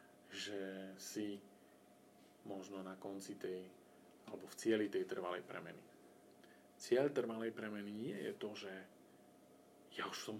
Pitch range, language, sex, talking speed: 95-110 Hz, Slovak, male, 125 wpm